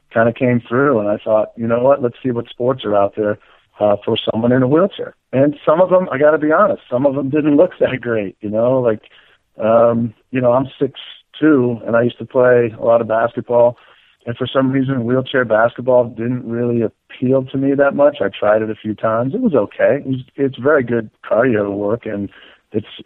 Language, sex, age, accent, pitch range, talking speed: English, male, 50-69, American, 110-130 Hz, 225 wpm